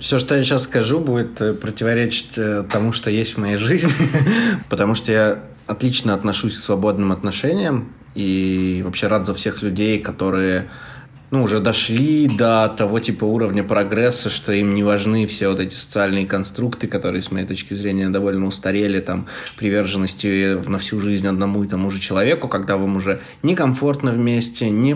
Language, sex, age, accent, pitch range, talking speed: Russian, male, 20-39, native, 95-110 Hz, 165 wpm